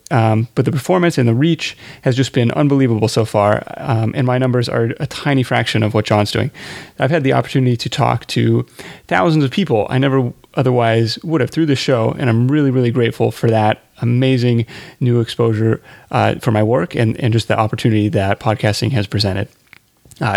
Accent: American